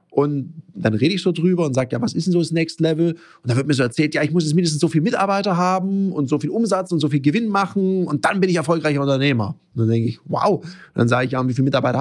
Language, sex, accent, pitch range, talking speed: German, male, German, 140-180 Hz, 300 wpm